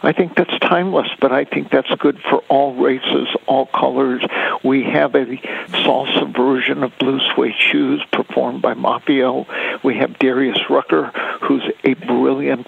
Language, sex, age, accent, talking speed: English, male, 60-79, American, 155 wpm